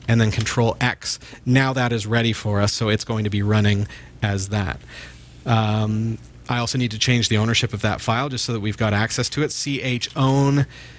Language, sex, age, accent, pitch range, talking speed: English, male, 40-59, American, 105-130 Hz, 215 wpm